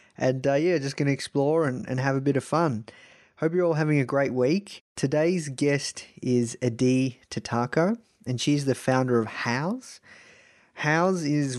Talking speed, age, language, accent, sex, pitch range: 175 wpm, 30-49, English, Australian, male, 130-180 Hz